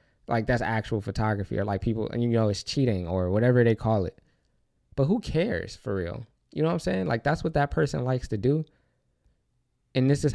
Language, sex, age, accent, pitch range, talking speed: English, male, 20-39, American, 105-135 Hz, 220 wpm